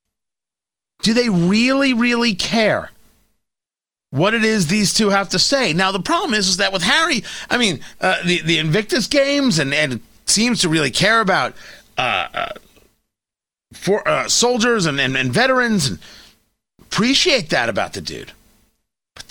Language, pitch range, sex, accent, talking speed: English, 155-220 Hz, male, American, 160 wpm